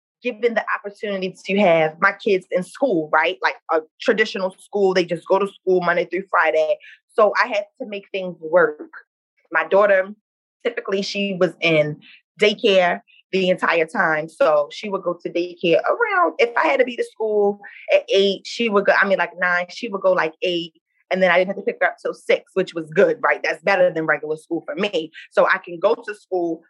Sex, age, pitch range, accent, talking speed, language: female, 20-39, 180-240 Hz, American, 215 wpm, English